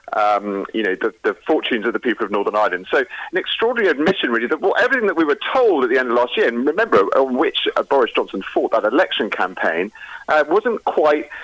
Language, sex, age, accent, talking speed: English, male, 40-59, British, 225 wpm